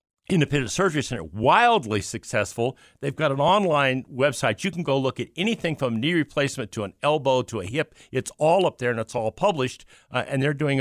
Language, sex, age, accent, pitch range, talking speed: English, male, 60-79, American, 115-150 Hz, 205 wpm